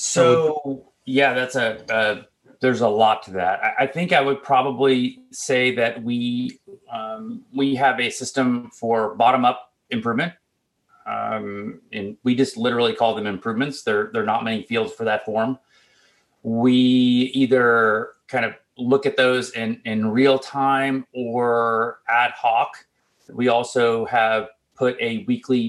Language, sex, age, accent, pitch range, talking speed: English, male, 30-49, American, 110-135 Hz, 150 wpm